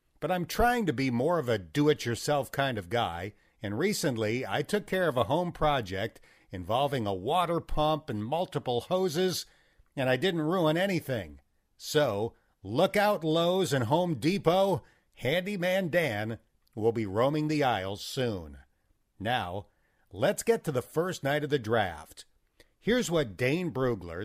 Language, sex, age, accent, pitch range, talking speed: English, male, 50-69, American, 115-170 Hz, 155 wpm